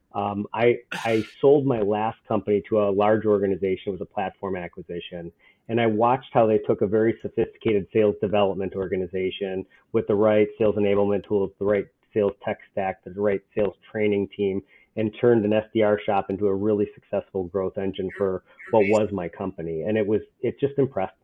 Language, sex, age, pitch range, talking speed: English, male, 30-49, 100-115 Hz, 185 wpm